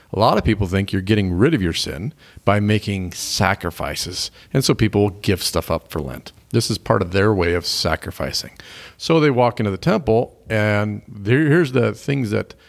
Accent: American